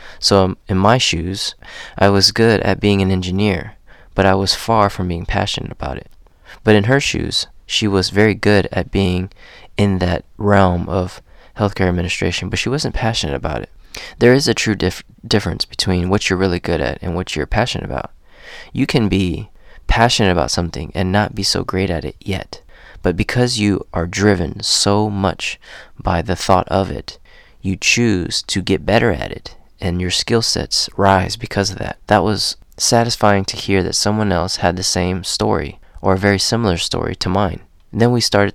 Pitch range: 90-105 Hz